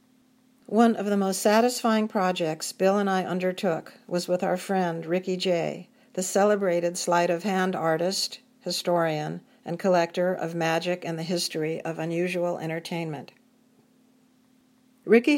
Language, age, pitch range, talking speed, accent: English, 50-69, 180-225 Hz, 125 wpm, American